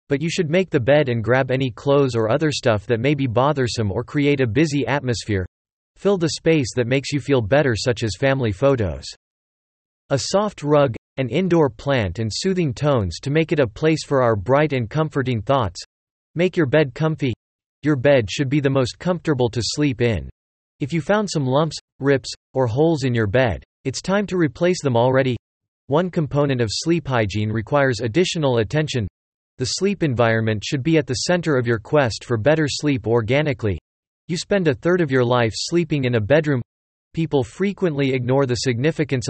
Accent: American